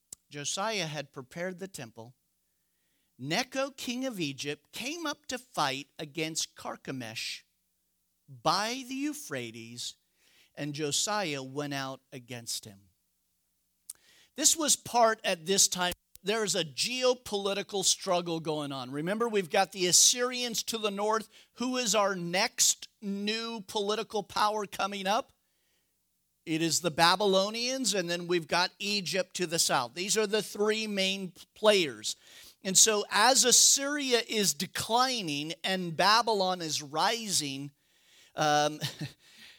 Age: 50-69